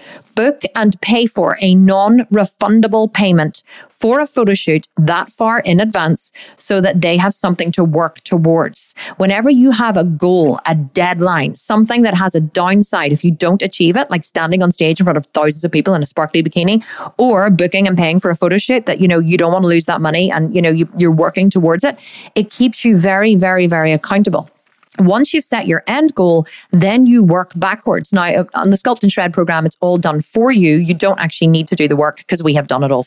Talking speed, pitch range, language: 225 wpm, 165-205 Hz, English